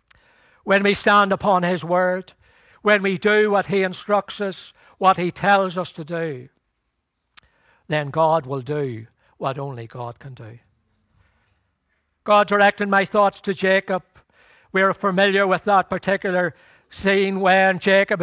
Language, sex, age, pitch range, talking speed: English, male, 60-79, 130-190 Hz, 140 wpm